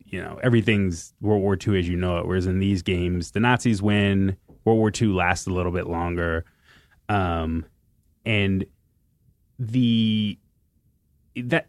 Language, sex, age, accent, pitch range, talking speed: English, male, 20-39, American, 100-125 Hz, 150 wpm